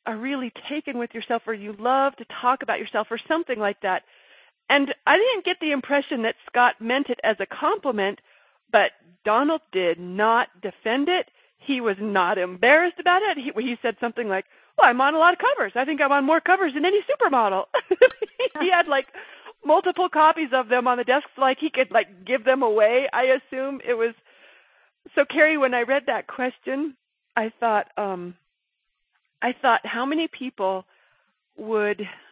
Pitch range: 195-275 Hz